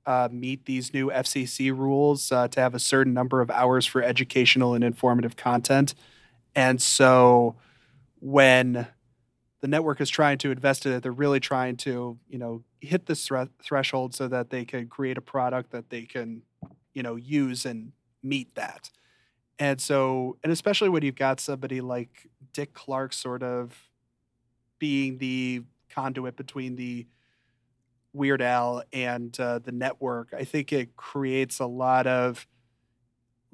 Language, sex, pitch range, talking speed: English, male, 120-135 Hz, 155 wpm